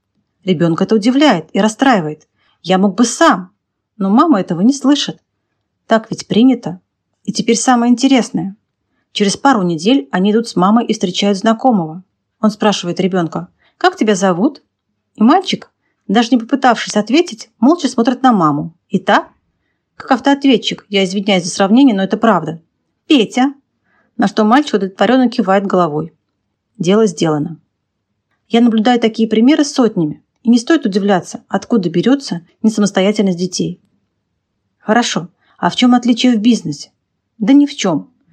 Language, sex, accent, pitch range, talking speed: Russian, female, native, 180-245 Hz, 145 wpm